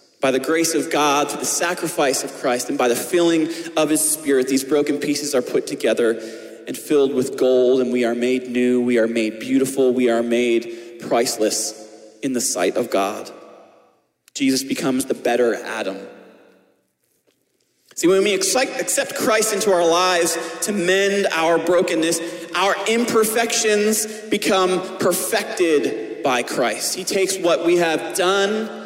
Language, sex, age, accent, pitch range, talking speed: English, male, 30-49, American, 135-195 Hz, 155 wpm